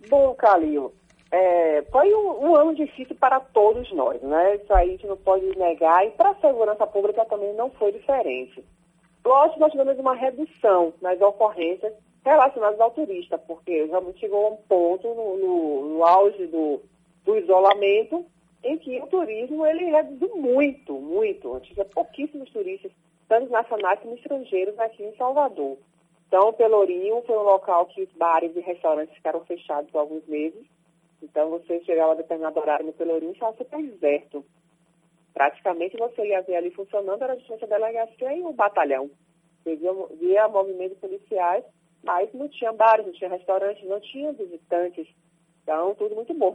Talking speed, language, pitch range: 170 wpm, Portuguese, 170-260 Hz